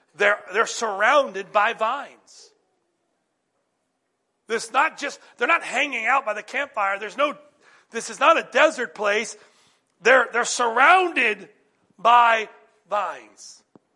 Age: 40-59